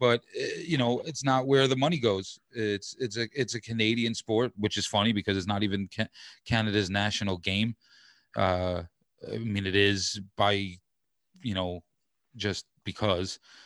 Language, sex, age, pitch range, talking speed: English, male, 30-49, 100-125 Hz, 160 wpm